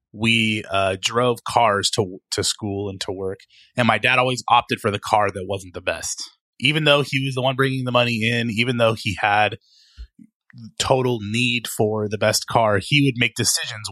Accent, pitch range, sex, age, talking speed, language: American, 100-130 Hz, male, 30-49, 200 wpm, English